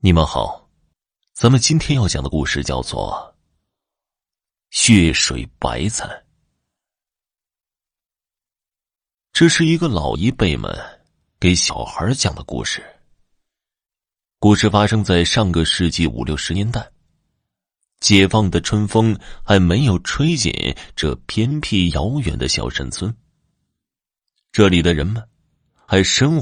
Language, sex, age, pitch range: Chinese, male, 30-49, 85-120 Hz